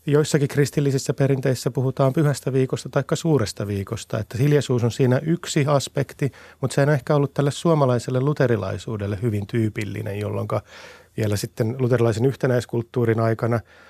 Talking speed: 135 wpm